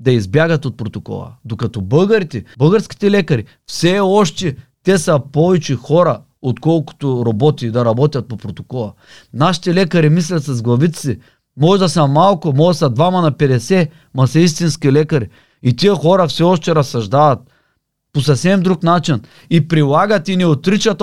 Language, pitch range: Bulgarian, 140-180 Hz